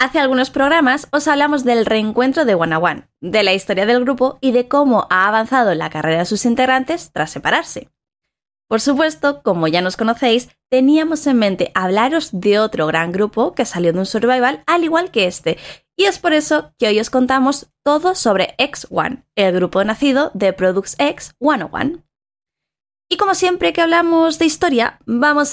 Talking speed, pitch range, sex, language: 180 wpm, 195-285 Hz, female, Spanish